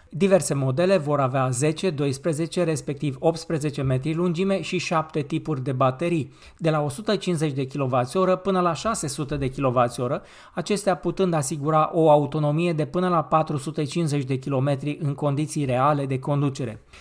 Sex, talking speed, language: male, 145 wpm, Romanian